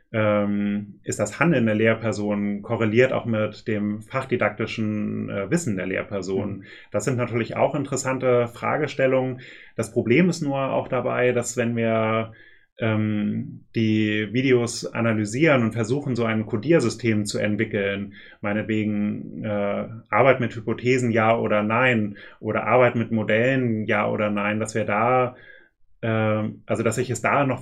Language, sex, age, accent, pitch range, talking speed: German, male, 30-49, German, 105-125 Hz, 135 wpm